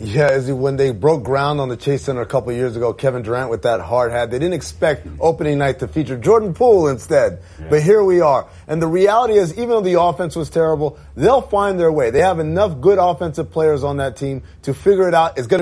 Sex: male